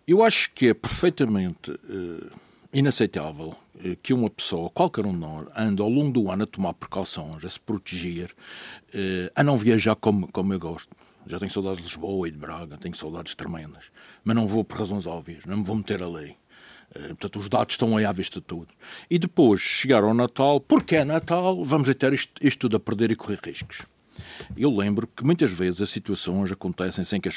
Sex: male